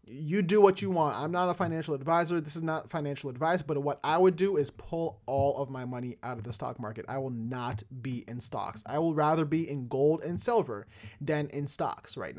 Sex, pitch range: male, 150-195 Hz